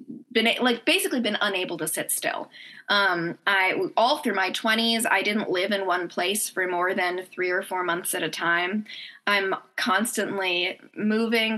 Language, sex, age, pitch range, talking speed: English, female, 10-29, 190-230 Hz, 170 wpm